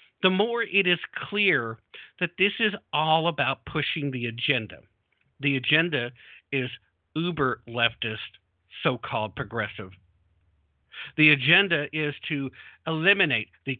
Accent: American